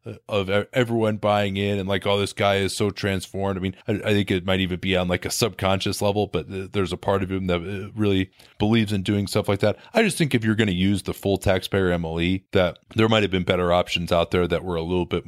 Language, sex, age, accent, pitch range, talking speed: English, male, 30-49, American, 85-110 Hz, 255 wpm